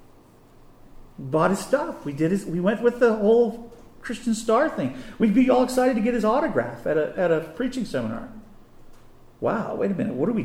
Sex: male